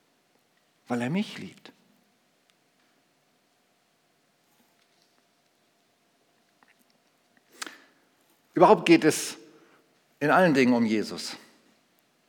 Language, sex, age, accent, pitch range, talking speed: German, male, 50-69, German, 135-205 Hz, 60 wpm